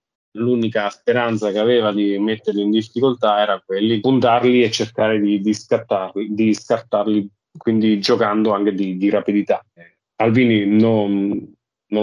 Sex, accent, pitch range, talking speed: male, native, 105-120 Hz, 130 wpm